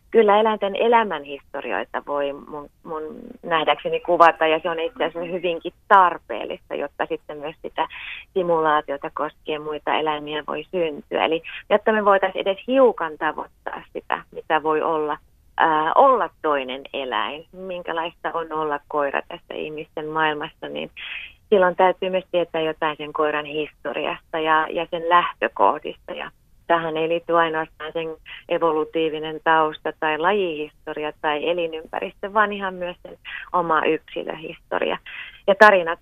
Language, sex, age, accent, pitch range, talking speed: Finnish, female, 30-49, native, 155-180 Hz, 135 wpm